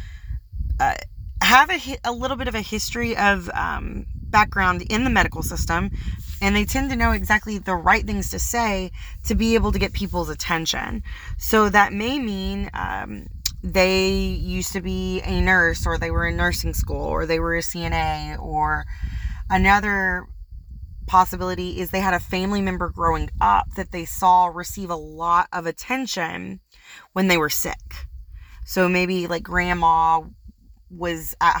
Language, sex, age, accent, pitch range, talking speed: English, female, 30-49, American, 145-185 Hz, 160 wpm